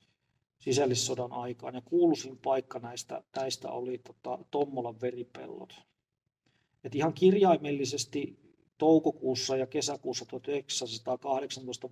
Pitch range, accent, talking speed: 125-140 Hz, native, 90 wpm